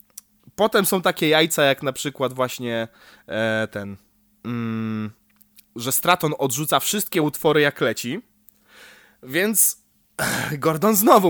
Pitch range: 115-195 Hz